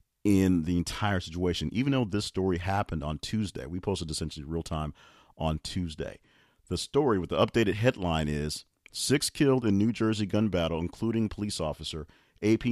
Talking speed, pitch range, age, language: 170 wpm, 80-105 Hz, 40-59, English